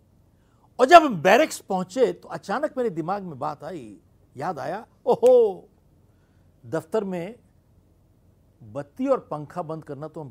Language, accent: Hindi, native